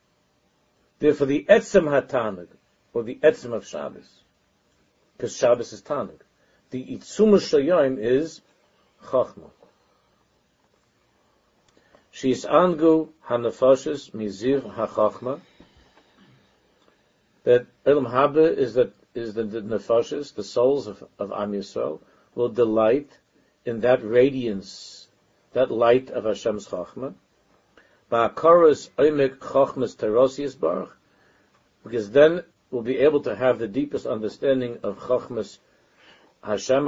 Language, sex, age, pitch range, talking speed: English, male, 50-69, 115-145 Hz, 95 wpm